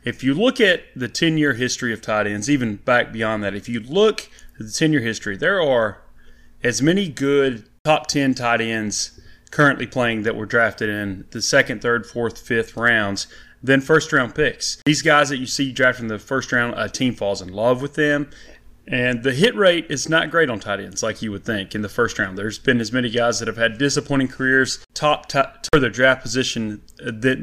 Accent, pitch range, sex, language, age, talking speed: American, 110-140 Hz, male, English, 30-49, 215 wpm